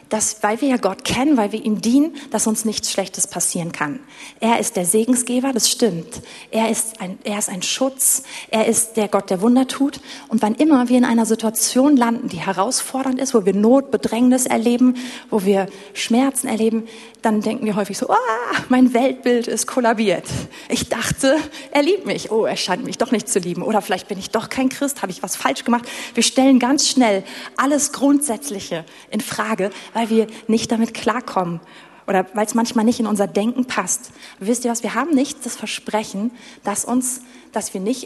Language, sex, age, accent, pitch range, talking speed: German, female, 30-49, German, 210-255 Hz, 195 wpm